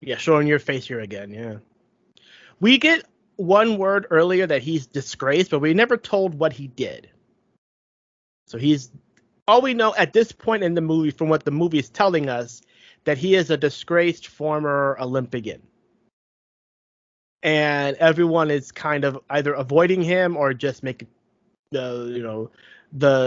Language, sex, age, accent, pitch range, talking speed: English, male, 30-49, American, 130-165 Hz, 160 wpm